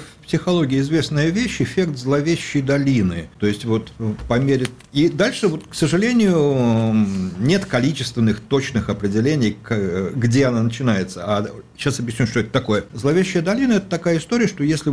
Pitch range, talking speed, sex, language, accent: 110-160 Hz, 150 wpm, male, Russian, native